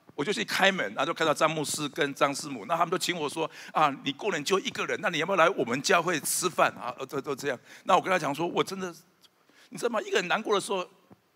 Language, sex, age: Chinese, male, 60-79